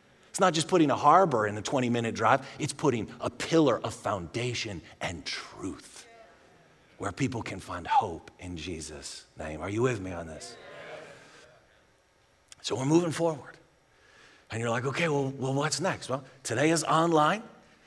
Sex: male